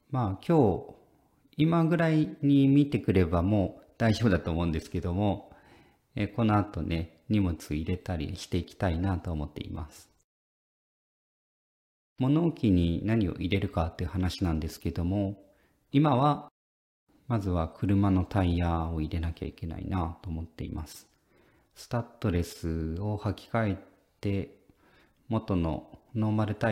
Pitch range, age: 85-110 Hz, 40-59